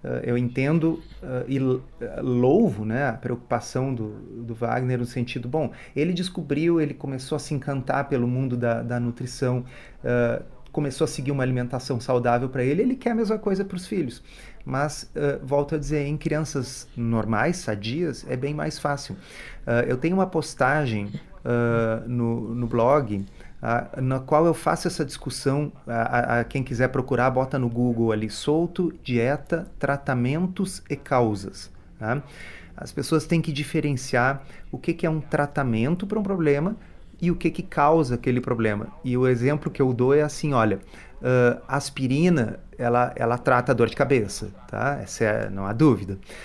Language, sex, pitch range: Portuguese, male, 120-155 Hz